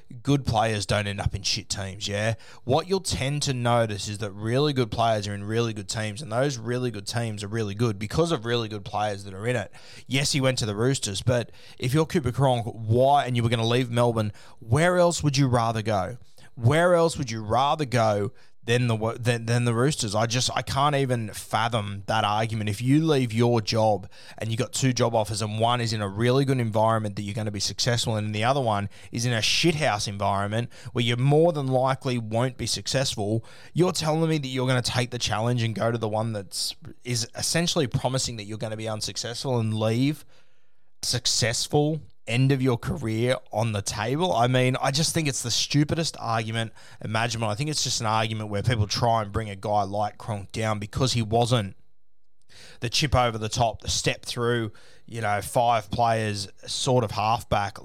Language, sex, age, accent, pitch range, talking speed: English, male, 20-39, Australian, 110-130 Hz, 215 wpm